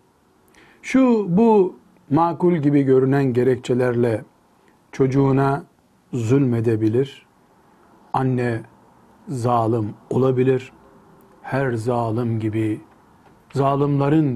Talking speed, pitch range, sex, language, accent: 65 wpm, 115-155 Hz, male, Turkish, native